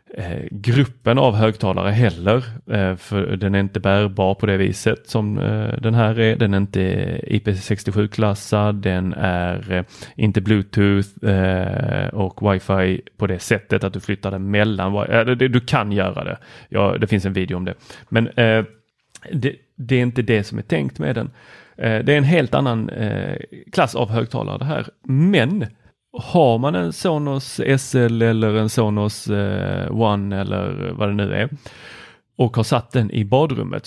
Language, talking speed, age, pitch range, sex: Swedish, 155 wpm, 30-49, 100-125 Hz, male